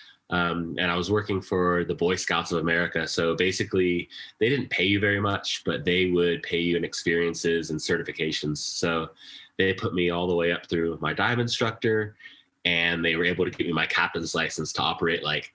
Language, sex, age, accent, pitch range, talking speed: English, male, 20-39, American, 85-95 Hz, 205 wpm